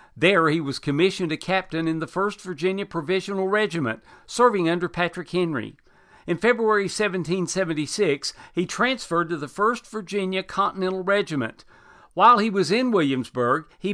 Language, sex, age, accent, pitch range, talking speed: English, male, 60-79, American, 155-200 Hz, 140 wpm